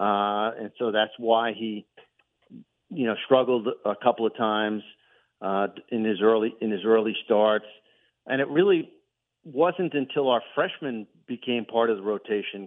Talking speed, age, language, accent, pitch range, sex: 155 wpm, 50-69, English, American, 105-125 Hz, male